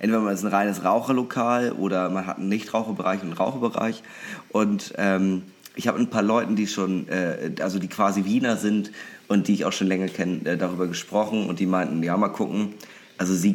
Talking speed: 210 wpm